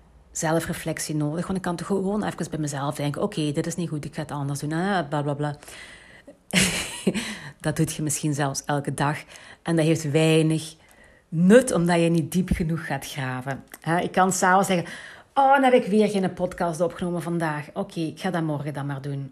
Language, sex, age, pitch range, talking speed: Dutch, female, 40-59, 150-200 Hz, 200 wpm